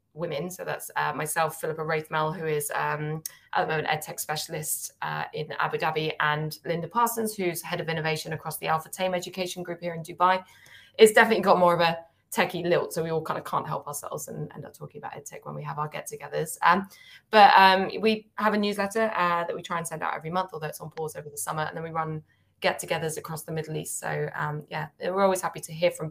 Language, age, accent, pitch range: English, 20-39, British, 155-185 Hz